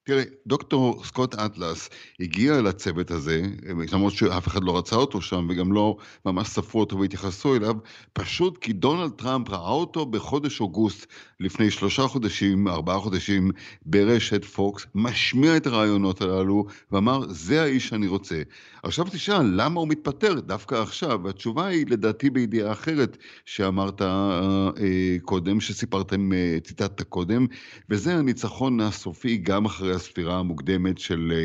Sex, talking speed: male, 135 wpm